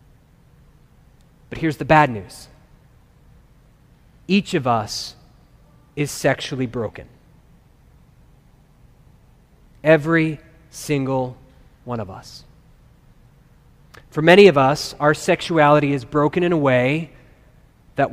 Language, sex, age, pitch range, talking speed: English, male, 30-49, 135-170 Hz, 95 wpm